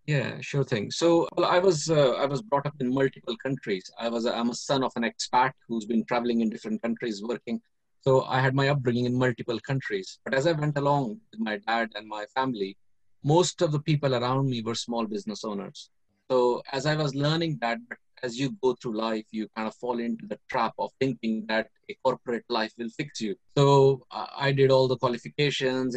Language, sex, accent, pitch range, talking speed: English, male, Indian, 115-140 Hz, 215 wpm